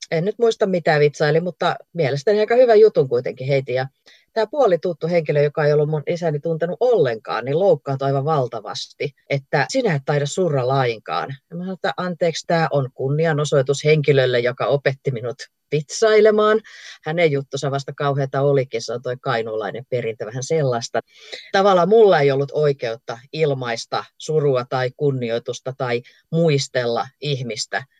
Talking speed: 150 wpm